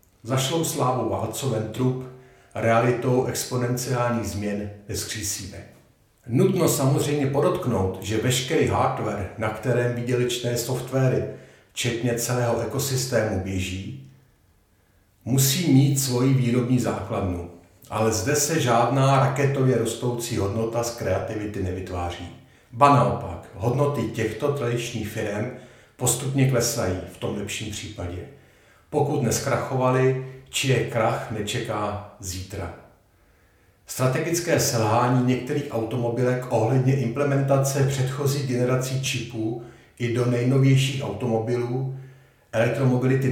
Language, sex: Czech, male